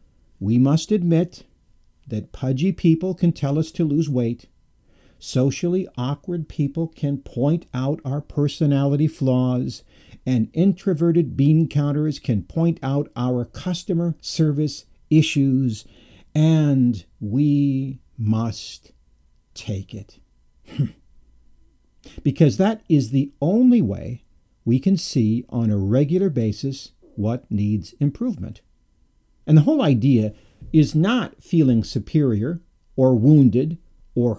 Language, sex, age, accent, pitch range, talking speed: English, male, 50-69, American, 110-155 Hz, 110 wpm